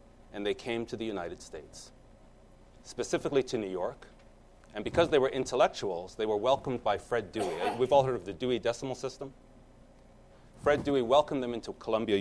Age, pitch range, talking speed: 30-49, 110-145 Hz, 175 wpm